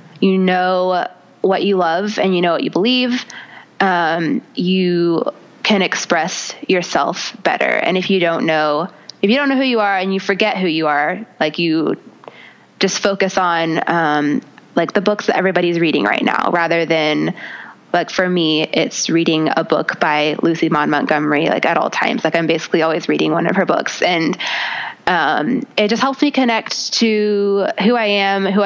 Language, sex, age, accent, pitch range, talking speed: English, female, 20-39, American, 165-210 Hz, 180 wpm